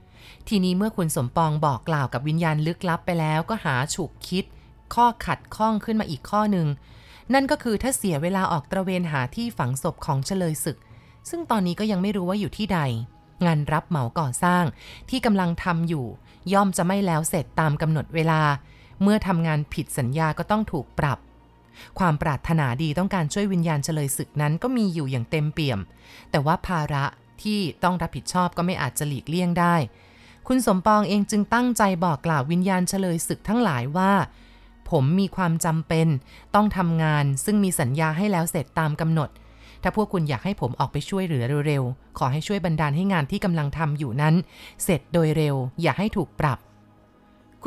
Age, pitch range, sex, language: 30-49, 150-195 Hz, female, Thai